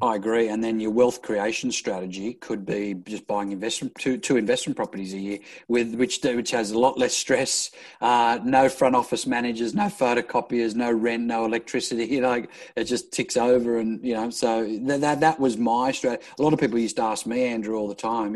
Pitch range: 110-125 Hz